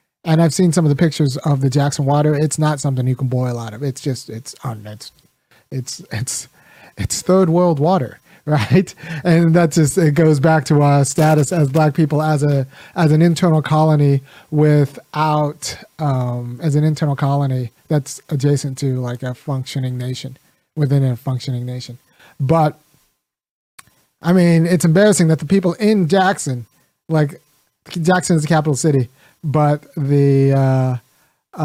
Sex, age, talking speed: male, 30-49, 155 wpm